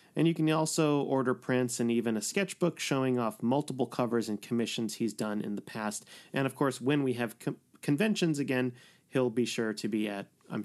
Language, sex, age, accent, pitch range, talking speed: English, male, 30-49, American, 120-155 Hz, 205 wpm